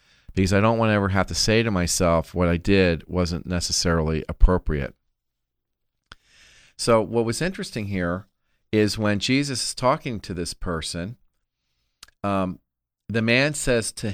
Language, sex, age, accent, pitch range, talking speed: English, male, 40-59, American, 80-110 Hz, 150 wpm